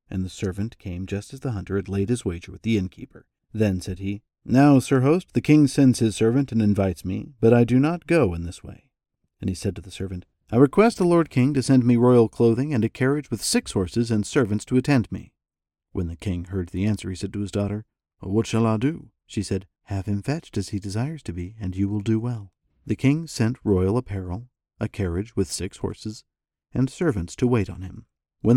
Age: 50-69